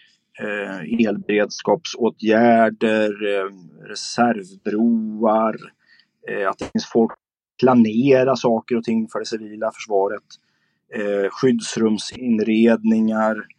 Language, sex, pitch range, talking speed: Swedish, male, 110-130 Hz, 60 wpm